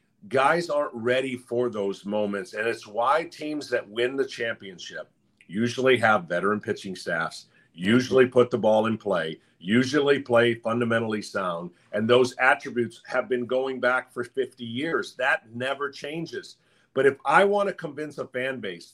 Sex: male